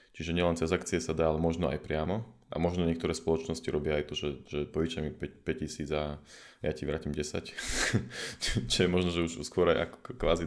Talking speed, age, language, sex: 200 wpm, 20-39, Slovak, male